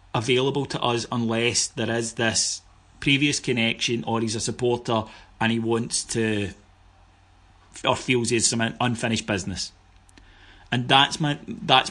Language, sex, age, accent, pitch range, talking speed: English, male, 30-49, British, 105-135 Hz, 135 wpm